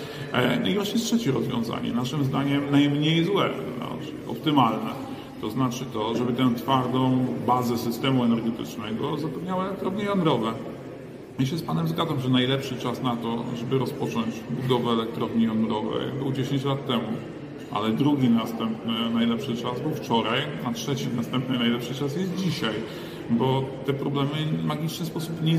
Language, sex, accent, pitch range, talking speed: Polish, male, native, 120-140 Hz, 145 wpm